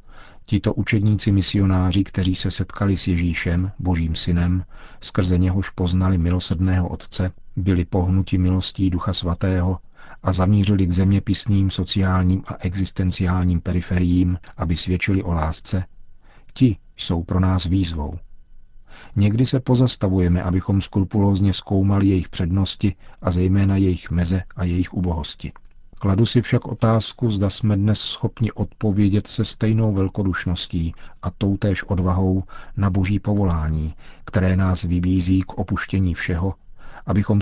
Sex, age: male, 40-59